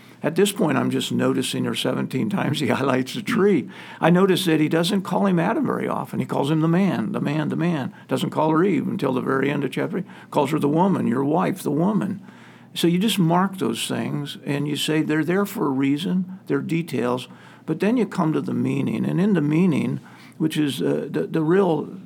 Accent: American